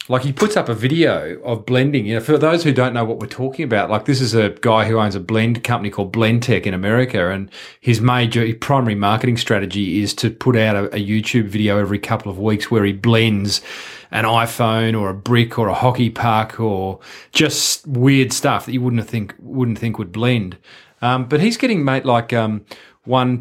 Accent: Australian